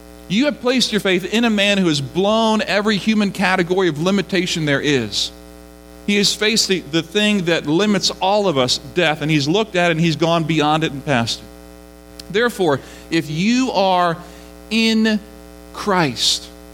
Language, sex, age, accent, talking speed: English, male, 40-59, American, 175 wpm